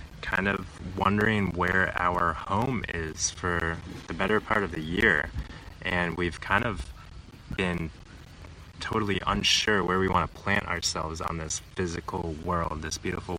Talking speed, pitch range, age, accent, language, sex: 150 wpm, 85-95 Hz, 20-39, American, English, male